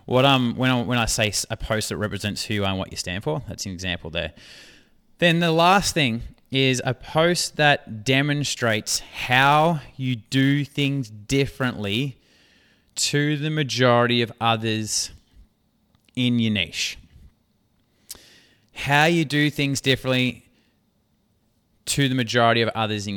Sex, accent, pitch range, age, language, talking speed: male, Australian, 100-130 Hz, 20-39, English, 145 wpm